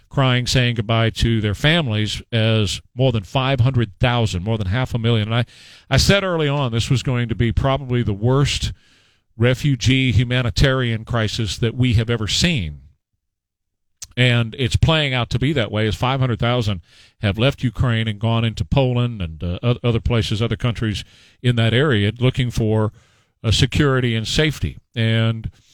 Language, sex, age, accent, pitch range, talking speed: English, male, 40-59, American, 115-135 Hz, 160 wpm